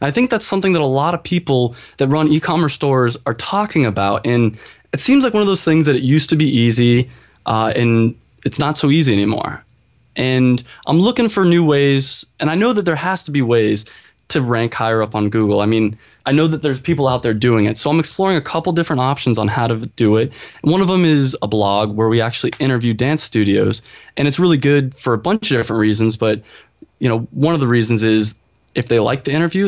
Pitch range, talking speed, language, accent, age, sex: 115-160 Hz, 235 wpm, English, American, 20-39, male